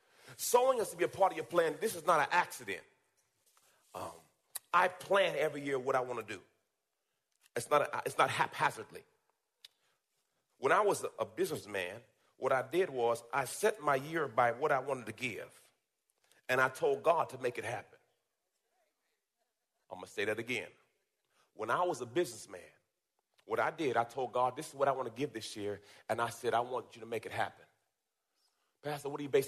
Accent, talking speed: American, 195 wpm